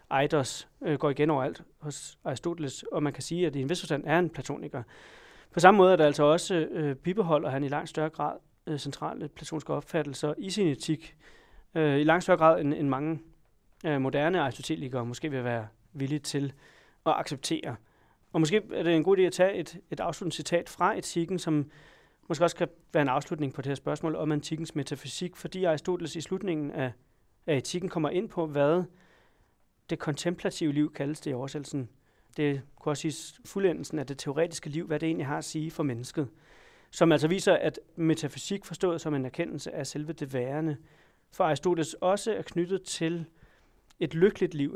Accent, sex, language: native, male, Danish